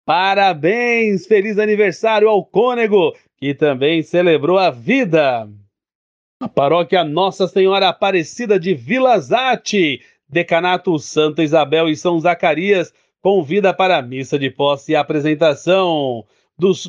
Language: Portuguese